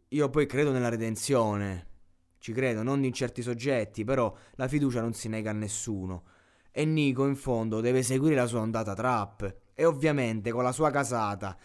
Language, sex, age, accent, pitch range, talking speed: Italian, male, 20-39, native, 110-145 Hz, 180 wpm